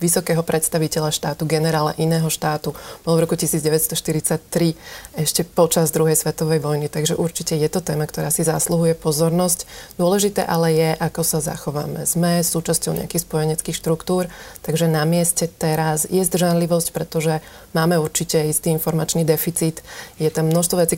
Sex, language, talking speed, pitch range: female, Slovak, 145 wpm, 155-175 Hz